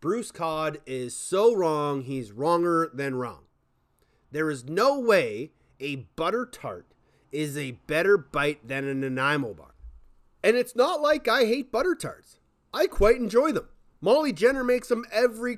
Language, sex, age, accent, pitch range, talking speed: English, male, 30-49, American, 130-200 Hz, 160 wpm